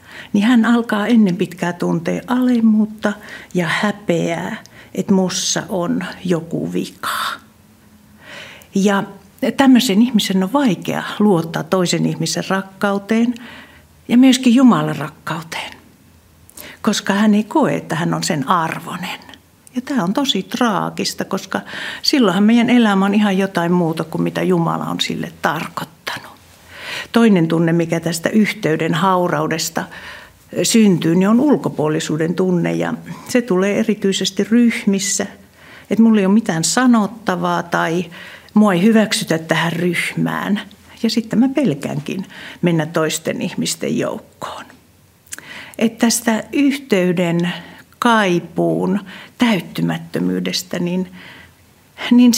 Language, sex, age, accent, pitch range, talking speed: Finnish, female, 60-79, native, 175-225 Hz, 110 wpm